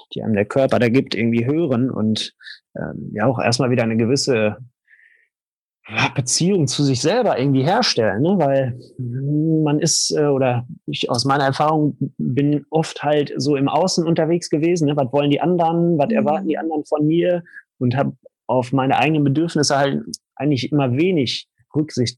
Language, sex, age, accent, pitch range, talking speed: German, male, 30-49, German, 125-145 Hz, 170 wpm